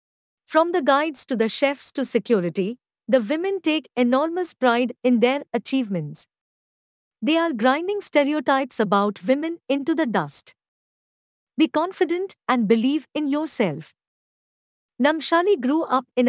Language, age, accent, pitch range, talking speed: English, 50-69, Indian, 230-310 Hz, 130 wpm